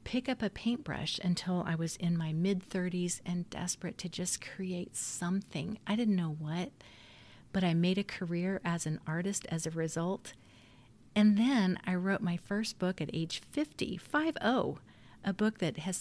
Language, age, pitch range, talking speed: English, 40-59, 165-200 Hz, 170 wpm